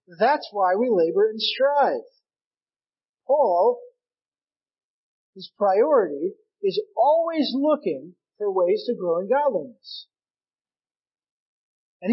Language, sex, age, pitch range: English, male, 40-59, 225-315 Hz